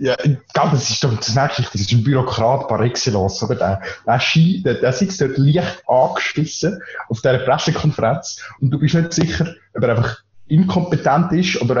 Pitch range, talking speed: 115-140 Hz, 160 wpm